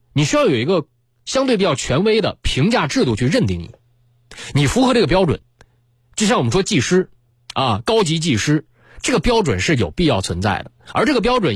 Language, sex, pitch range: Chinese, male, 115-155 Hz